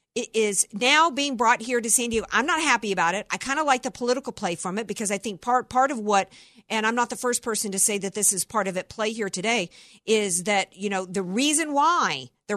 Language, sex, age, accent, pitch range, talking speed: English, female, 50-69, American, 200-265 Hz, 265 wpm